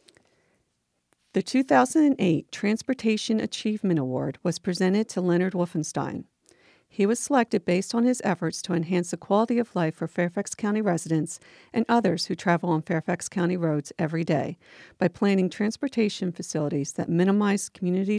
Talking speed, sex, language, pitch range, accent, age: 145 wpm, female, English, 170-225 Hz, American, 40-59